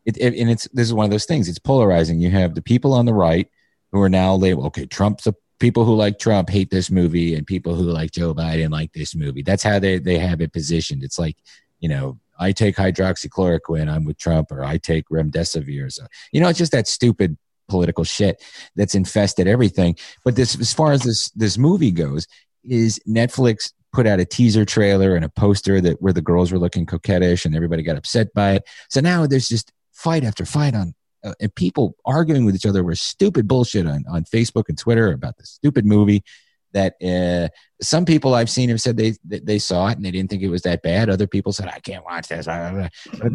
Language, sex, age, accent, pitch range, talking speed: English, male, 30-49, American, 90-120 Hz, 225 wpm